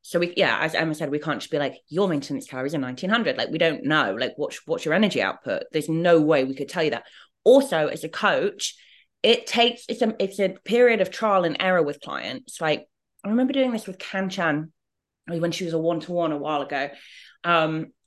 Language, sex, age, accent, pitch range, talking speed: English, female, 20-39, British, 150-190 Hz, 225 wpm